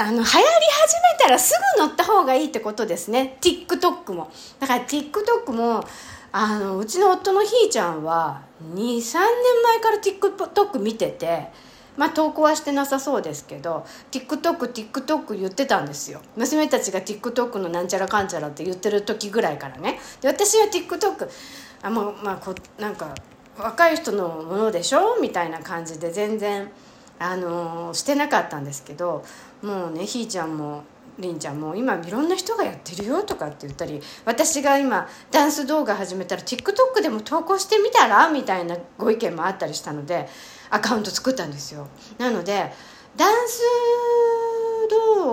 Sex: female